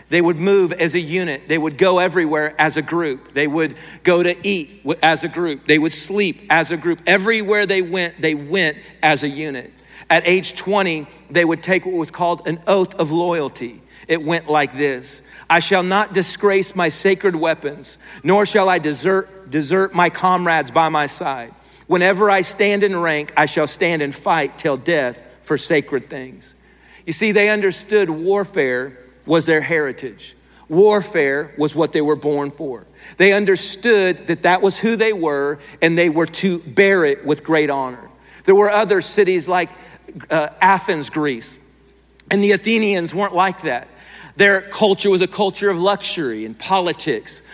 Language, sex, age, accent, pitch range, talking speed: English, male, 50-69, American, 155-195 Hz, 175 wpm